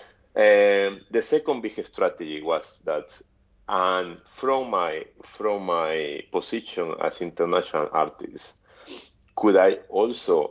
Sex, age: male, 30-49